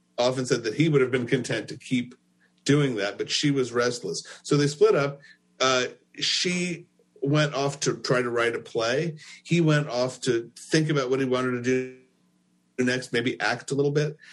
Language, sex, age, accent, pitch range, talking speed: English, male, 50-69, American, 105-140 Hz, 195 wpm